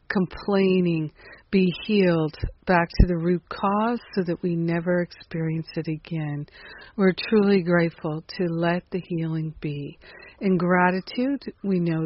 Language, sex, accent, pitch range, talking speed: English, female, American, 160-195 Hz, 135 wpm